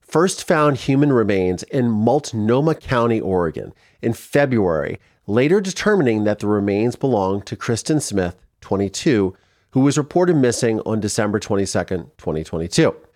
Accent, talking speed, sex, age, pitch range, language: American, 130 wpm, male, 40-59, 100-135 Hz, English